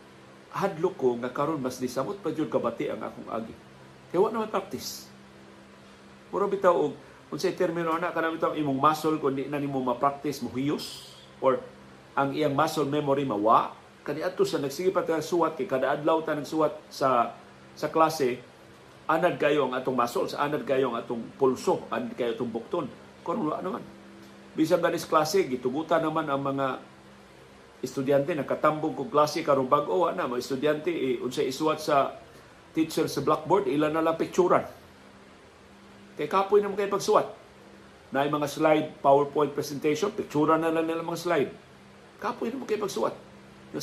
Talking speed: 150 wpm